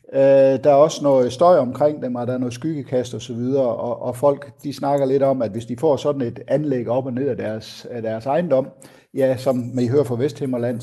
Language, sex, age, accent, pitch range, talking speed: Danish, male, 60-79, native, 115-140 Hz, 240 wpm